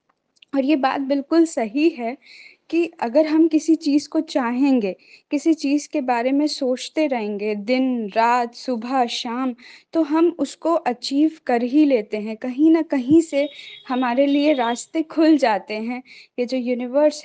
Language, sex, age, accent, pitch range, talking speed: Hindi, female, 20-39, native, 240-305 Hz, 155 wpm